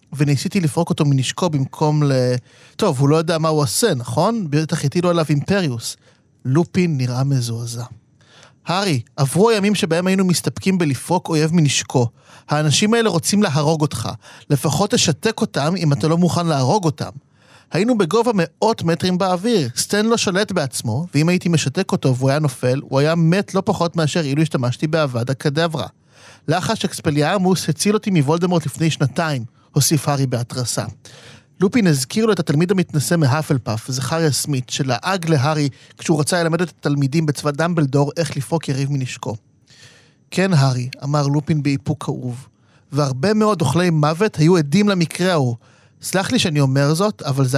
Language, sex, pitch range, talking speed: Hebrew, male, 135-175 Hz, 155 wpm